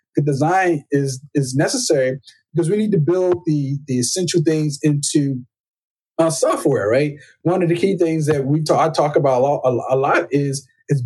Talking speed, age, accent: 175 wpm, 30-49, American